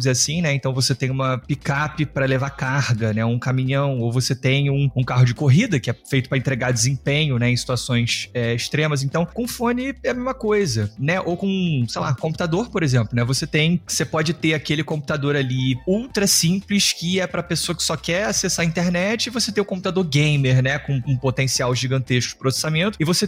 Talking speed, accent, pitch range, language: 220 wpm, Brazilian, 130-170 Hz, Portuguese